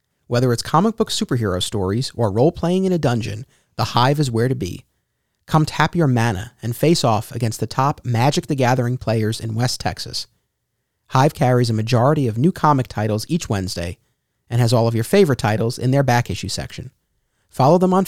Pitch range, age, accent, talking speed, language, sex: 115-150 Hz, 30-49, American, 195 wpm, English, male